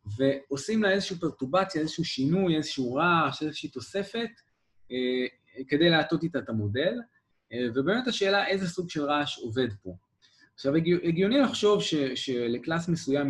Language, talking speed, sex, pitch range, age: Hebrew, 145 wpm, male, 120-170 Hz, 20-39